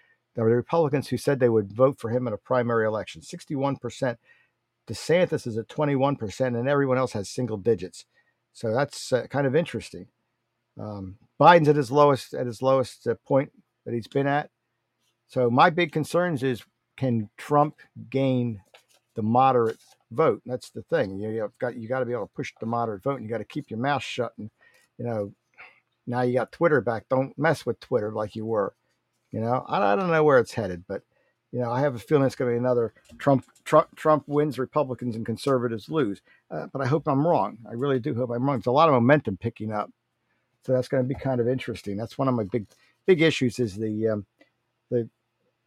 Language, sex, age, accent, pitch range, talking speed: English, male, 50-69, American, 115-140 Hz, 215 wpm